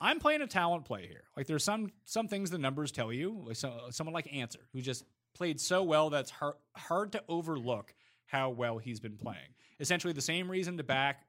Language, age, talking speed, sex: English, 30-49, 205 wpm, male